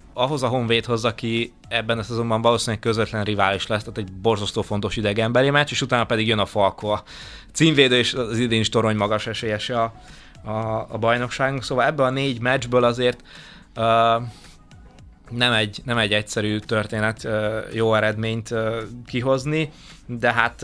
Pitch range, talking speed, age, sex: 105-120 Hz, 165 wpm, 20-39, male